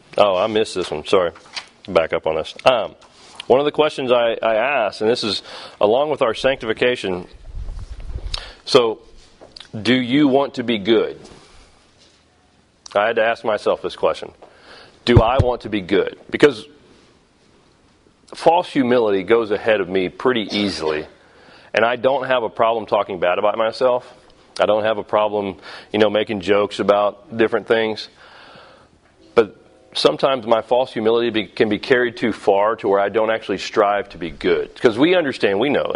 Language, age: English, 40-59